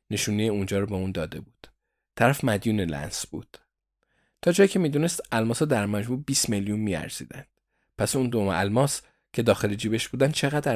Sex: male